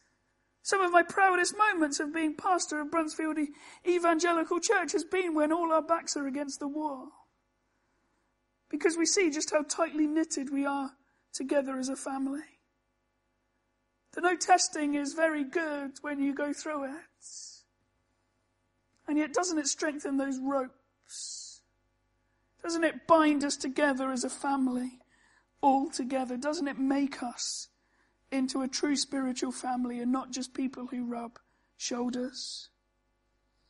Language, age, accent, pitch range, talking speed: English, 40-59, British, 270-320 Hz, 140 wpm